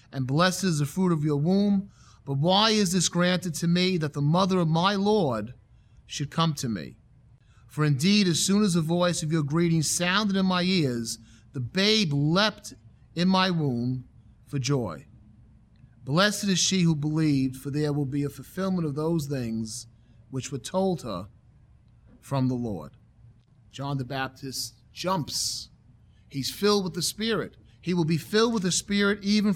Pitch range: 130-195 Hz